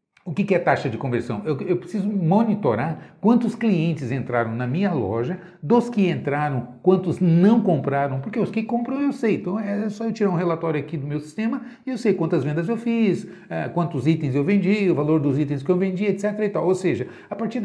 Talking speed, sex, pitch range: 215 wpm, male, 155-200 Hz